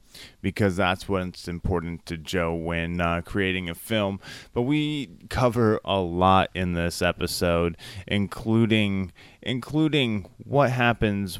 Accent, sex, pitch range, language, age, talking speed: American, male, 90-110 Hz, English, 30-49, 120 wpm